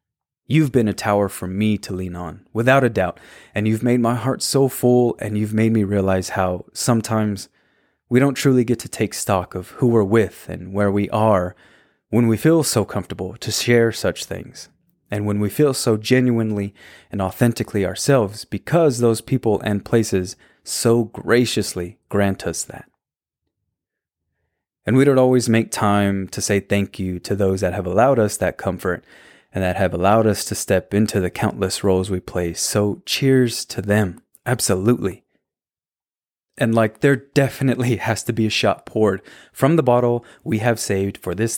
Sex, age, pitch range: male, 20-39, 100-120 Hz